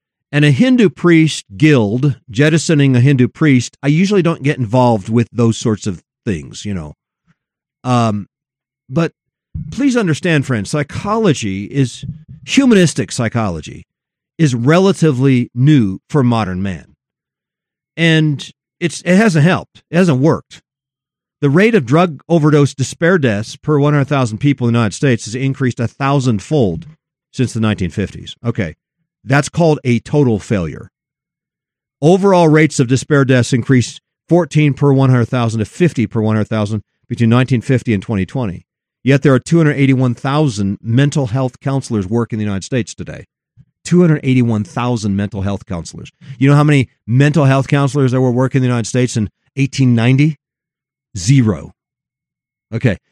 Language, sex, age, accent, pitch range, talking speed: English, male, 50-69, American, 120-150 Hz, 140 wpm